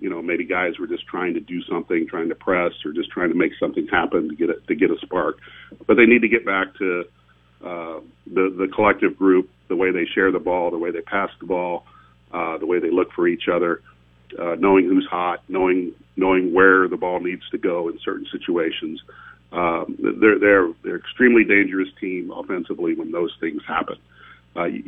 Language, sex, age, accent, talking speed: English, male, 40-59, American, 210 wpm